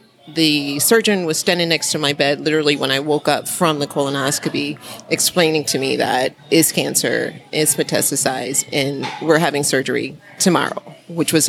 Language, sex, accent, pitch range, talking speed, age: English, female, American, 145-180 Hz, 160 wpm, 30-49